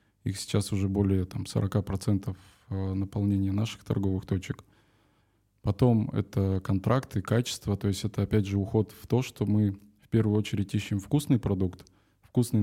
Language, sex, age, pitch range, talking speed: Russian, male, 20-39, 100-110 Hz, 145 wpm